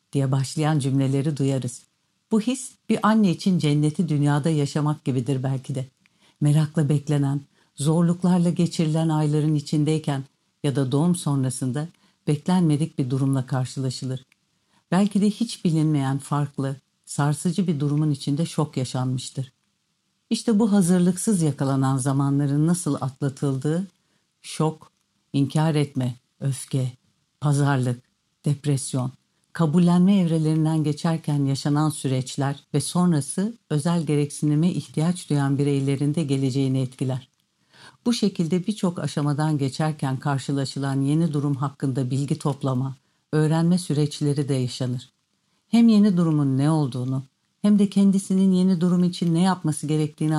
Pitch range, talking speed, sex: 140-170 Hz, 115 wpm, female